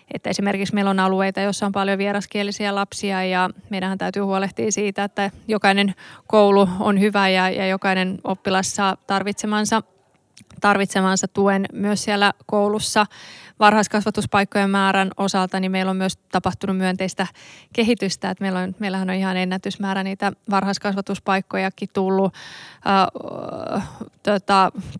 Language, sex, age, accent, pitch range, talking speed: Finnish, female, 20-39, native, 190-205 Hz, 130 wpm